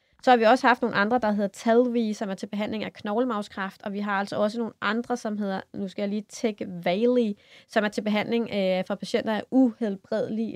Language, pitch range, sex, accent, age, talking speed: Danish, 200-235 Hz, female, native, 30-49, 220 wpm